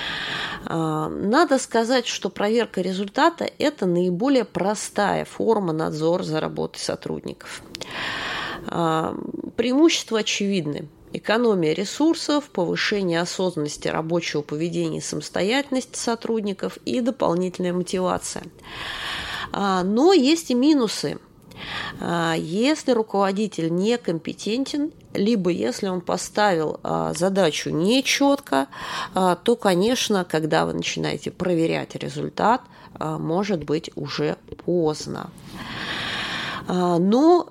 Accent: native